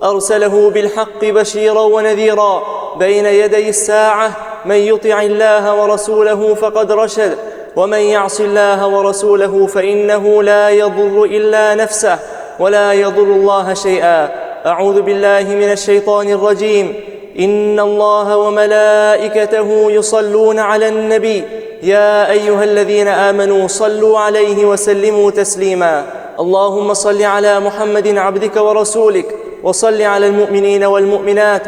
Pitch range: 200-210 Hz